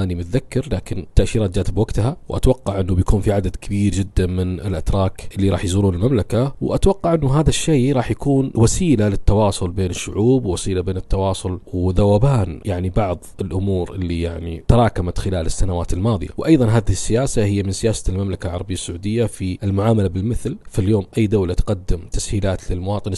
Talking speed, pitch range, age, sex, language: 160 wpm, 90-110 Hz, 40-59, male, Arabic